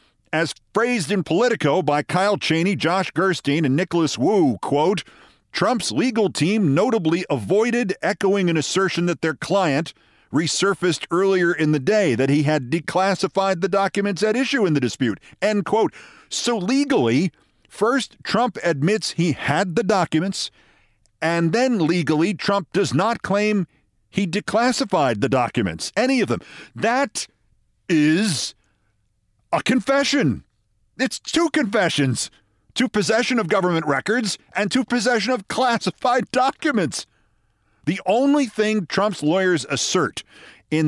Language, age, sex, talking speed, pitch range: English, 50-69, male, 130 wpm, 150-210 Hz